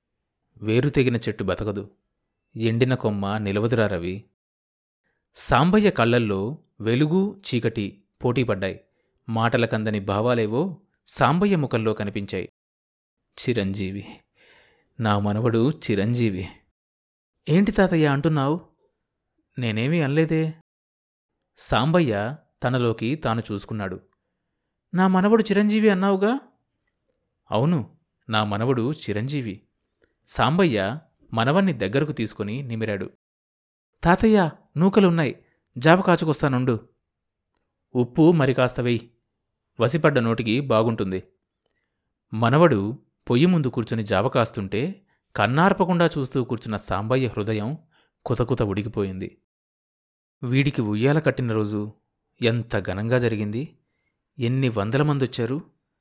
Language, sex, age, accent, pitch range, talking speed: Telugu, male, 30-49, native, 105-150 Hz, 80 wpm